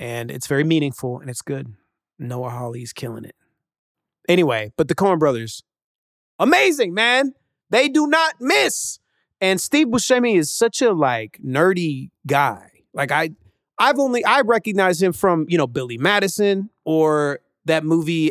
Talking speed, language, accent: 150 wpm, English, American